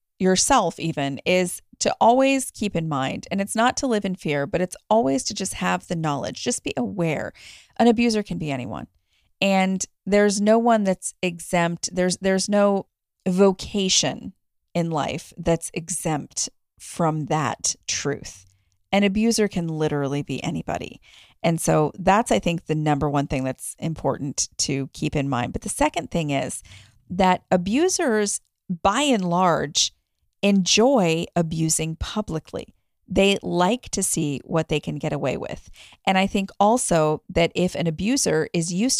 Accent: American